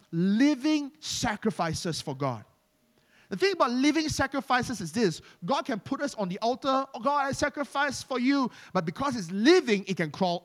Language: English